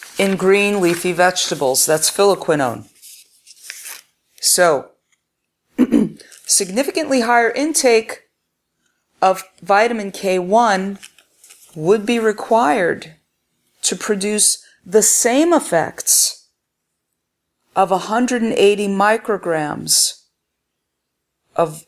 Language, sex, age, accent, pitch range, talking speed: English, female, 40-59, American, 160-205 Hz, 70 wpm